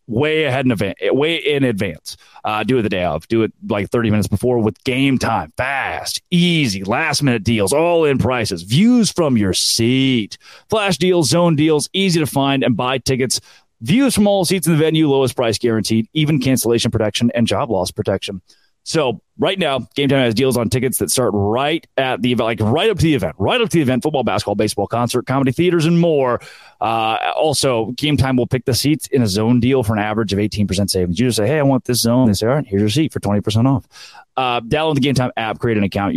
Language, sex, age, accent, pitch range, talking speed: English, male, 30-49, American, 110-140 Hz, 230 wpm